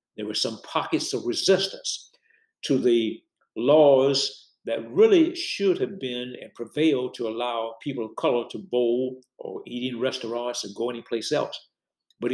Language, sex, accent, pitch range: English, male, American, 120-165 Hz